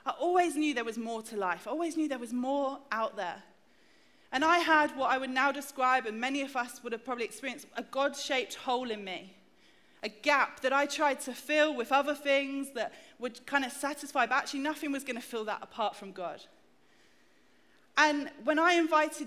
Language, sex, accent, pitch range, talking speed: English, female, British, 255-310 Hz, 210 wpm